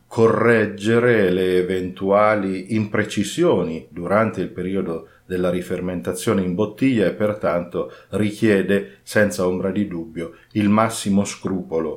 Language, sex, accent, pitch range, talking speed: Italian, male, native, 90-115 Hz, 105 wpm